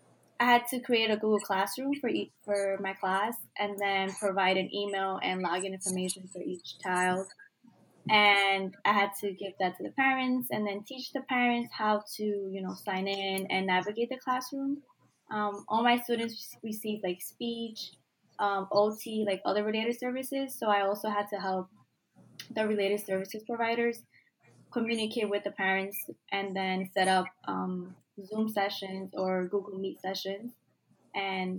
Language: English